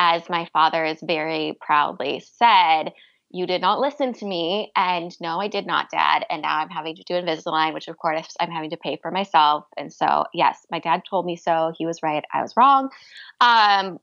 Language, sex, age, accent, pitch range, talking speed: English, female, 20-39, American, 170-240 Hz, 215 wpm